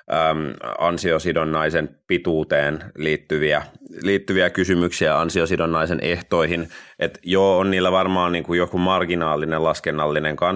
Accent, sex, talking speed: native, male, 85 wpm